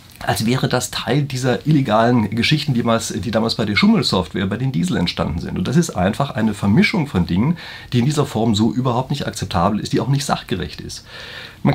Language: German